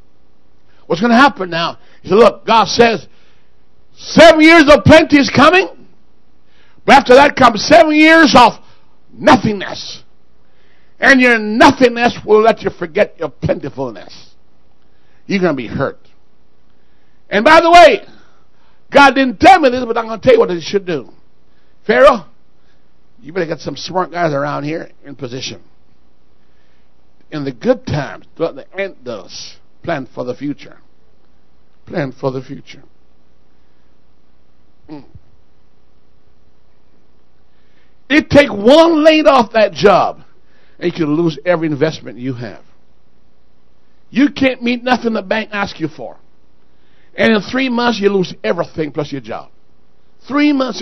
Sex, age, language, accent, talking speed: male, 60-79, English, American, 145 wpm